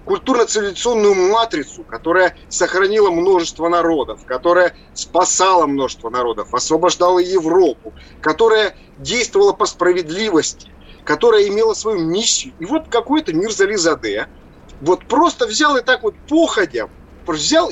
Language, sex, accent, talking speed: Russian, male, native, 115 wpm